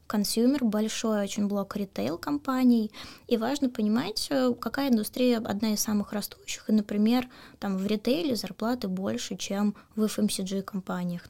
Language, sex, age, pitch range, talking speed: Russian, female, 20-39, 200-230 Hz, 130 wpm